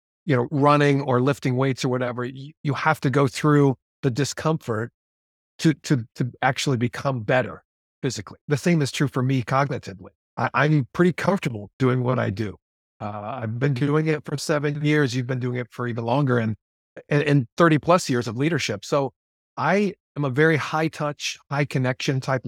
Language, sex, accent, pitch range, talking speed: English, male, American, 115-145 Hz, 185 wpm